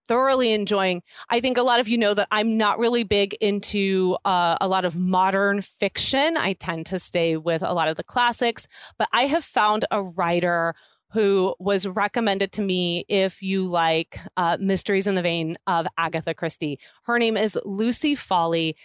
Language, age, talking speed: English, 30-49, 185 wpm